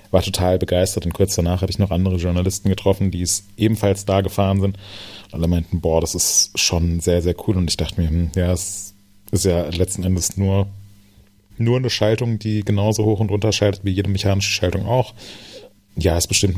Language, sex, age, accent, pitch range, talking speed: German, male, 30-49, German, 90-100 Hz, 210 wpm